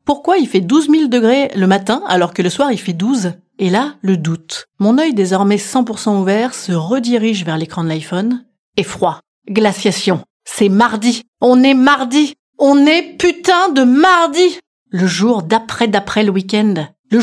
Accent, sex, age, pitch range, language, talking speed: French, female, 30-49, 195-255 Hz, French, 175 wpm